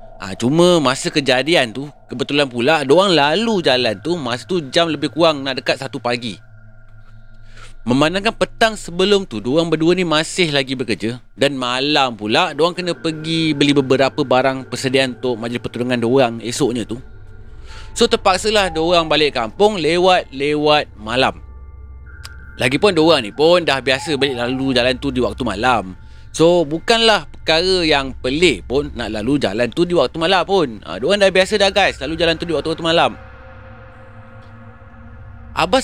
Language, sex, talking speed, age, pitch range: Malay, male, 160 wpm, 30-49, 110-170 Hz